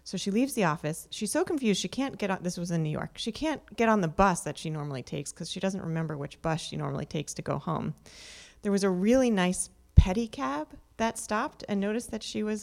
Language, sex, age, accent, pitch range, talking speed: English, female, 30-49, American, 160-205 Hz, 245 wpm